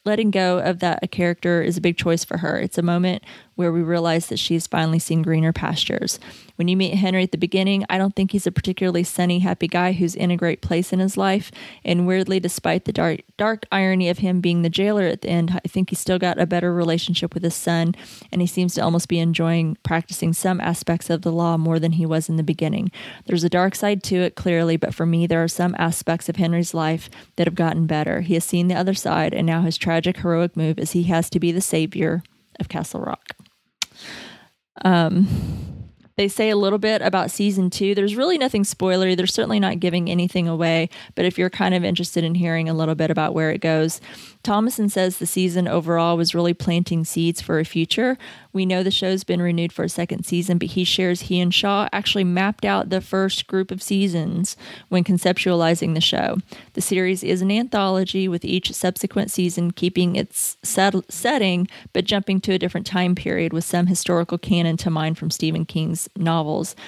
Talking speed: 215 wpm